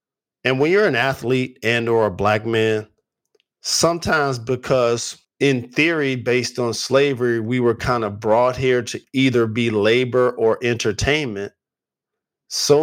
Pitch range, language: 110-135 Hz, English